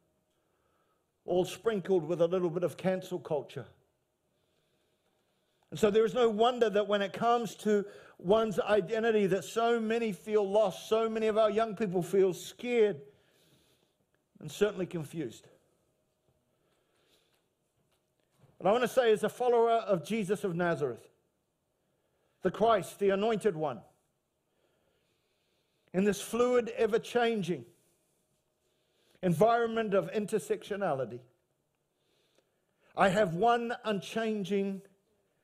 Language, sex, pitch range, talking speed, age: English, male, 195-235 Hz, 110 wpm, 50-69